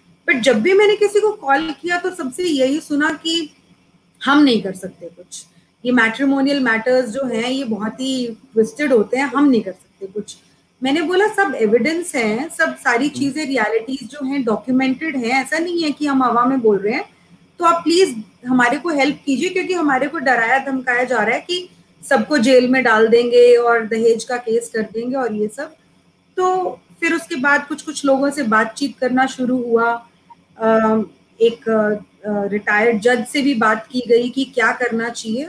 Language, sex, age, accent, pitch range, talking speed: Hindi, female, 30-49, native, 230-290 Hz, 190 wpm